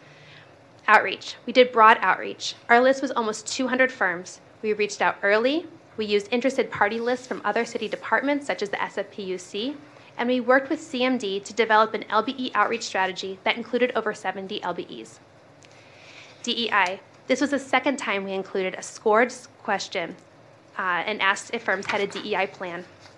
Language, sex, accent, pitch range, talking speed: English, female, American, 195-245 Hz, 165 wpm